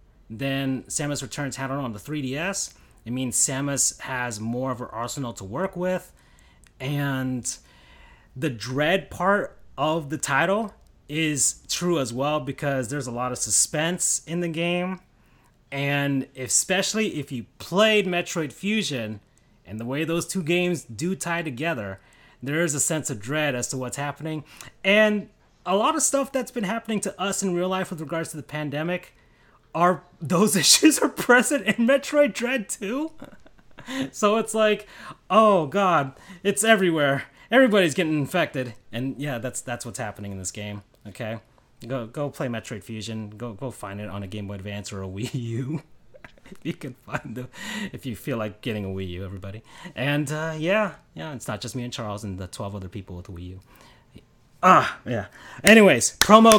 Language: English